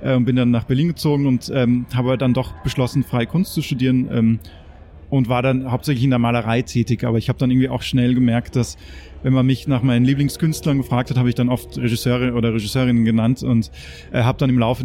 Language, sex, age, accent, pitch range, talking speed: German, male, 30-49, German, 115-130 Hz, 225 wpm